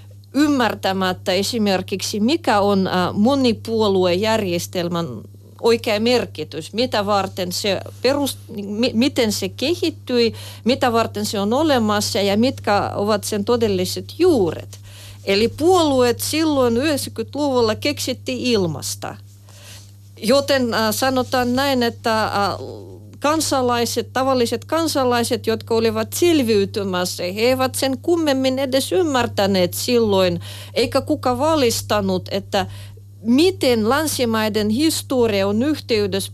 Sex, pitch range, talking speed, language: female, 180-255 Hz, 90 wpm, Finnish